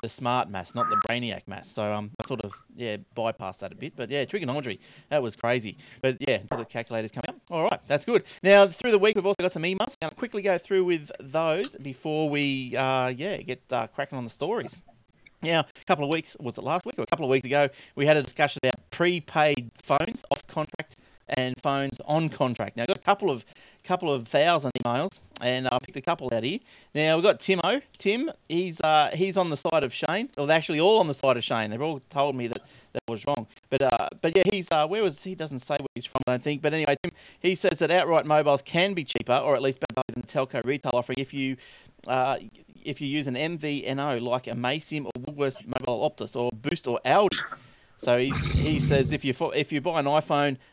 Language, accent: English, Australian